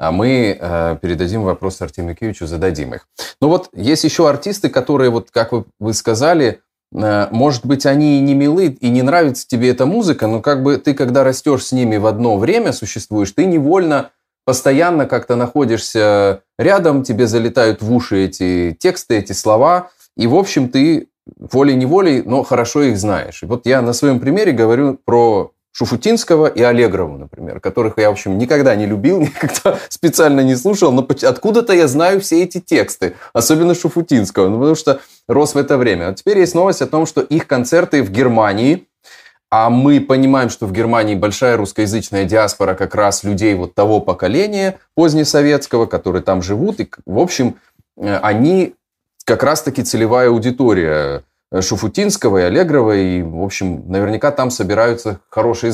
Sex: male